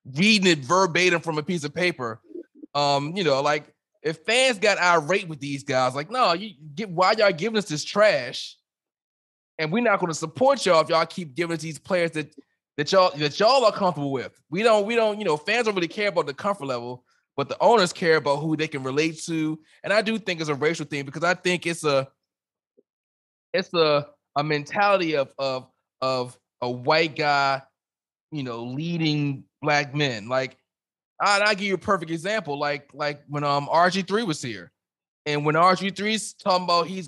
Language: English